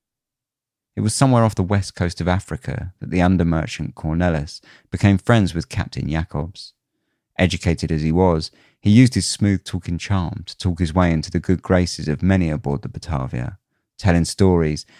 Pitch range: 80-100 Hz